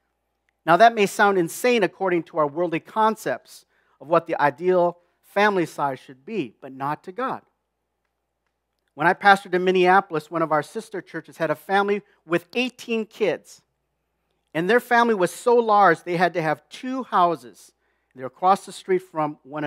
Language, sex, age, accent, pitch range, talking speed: English, male, 50-69, American, 145-200 Hz, 175 wpm